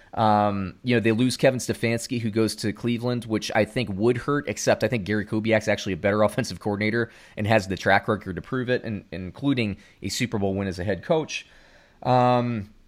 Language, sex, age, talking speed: English, male, 30-49, 210 wpm